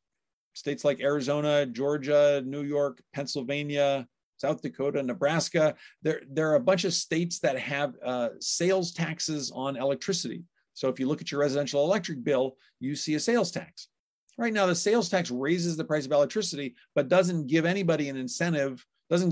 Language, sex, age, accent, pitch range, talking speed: English, male, 50-69, American, 140-170 Hz, 170 wpm